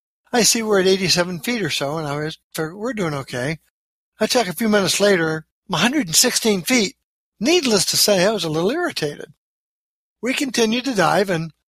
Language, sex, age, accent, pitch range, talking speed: English, male, 60-79, American, 165-215 Hz, 185 wpm